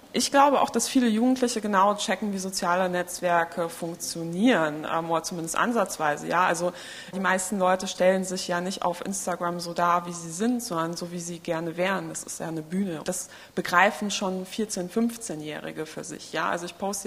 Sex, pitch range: female, 175-205 Hz